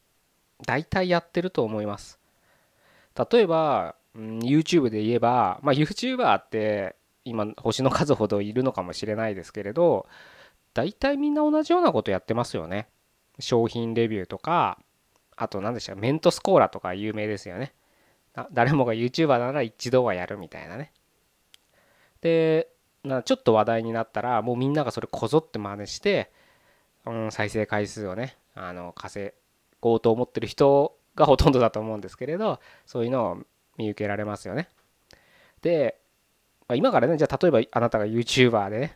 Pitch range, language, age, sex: 105-140 Hz, Japanese, 20-39, male